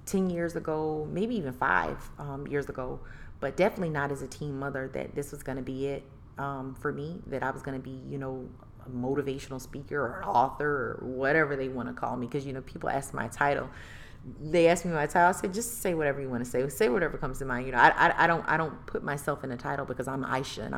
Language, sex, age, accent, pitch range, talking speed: English, female, 30-49, American, 130-150 Hz, 260 wpm